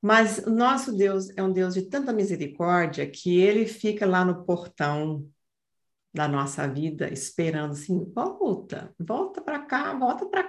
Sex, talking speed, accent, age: female, 155 wpm, Brazilian, 50-69